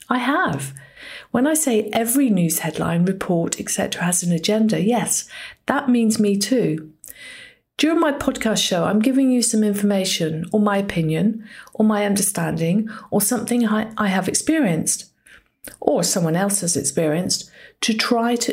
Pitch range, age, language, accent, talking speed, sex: 185-235 Hz, 50-69, English, British, 150 wpm, female